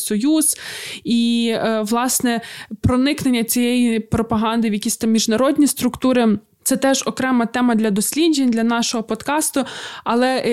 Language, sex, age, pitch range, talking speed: Ukrainian, female, 20-39, 220-255 Hz, 120 wpm